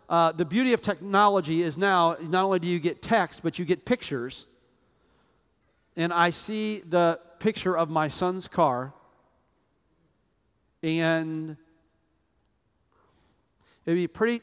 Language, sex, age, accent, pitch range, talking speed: English, male, 40-59, American, 155-190 Hz, 130 wpm